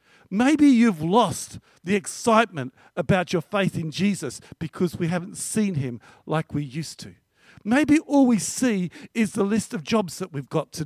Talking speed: 175 wpm